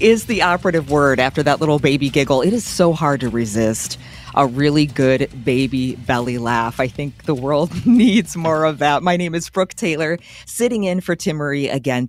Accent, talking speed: American, 195 wpm